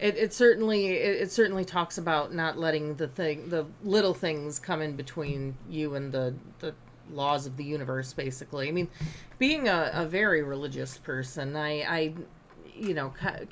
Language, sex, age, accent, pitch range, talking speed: English, female, 30-49, American, 145-175 Hz, 175 wpm